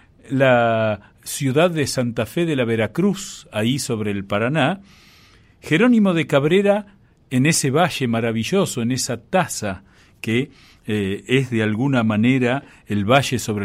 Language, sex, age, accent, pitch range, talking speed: Spanish, male, 50-69, Argentinian, 105-135 Hz, 135 wpm